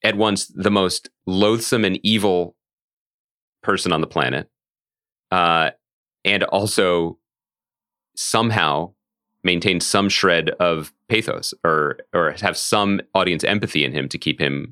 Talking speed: 125 wpm